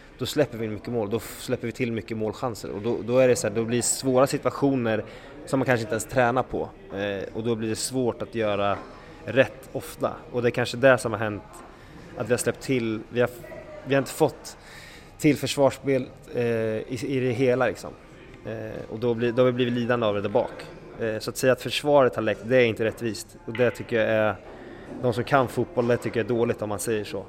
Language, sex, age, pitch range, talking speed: English, male, 20-39, 110-125 Hz, 240 wpm